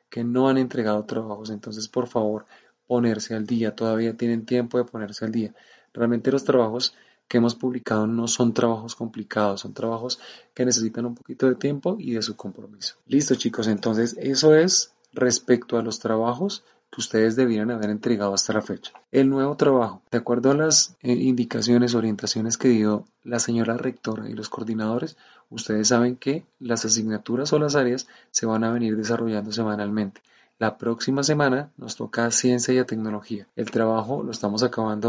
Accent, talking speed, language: Colombian, 175 wpm, Spanish